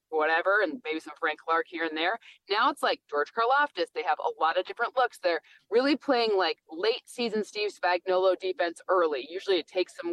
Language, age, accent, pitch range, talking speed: English, 20-39, American, 170-270 Hz, 205 wpm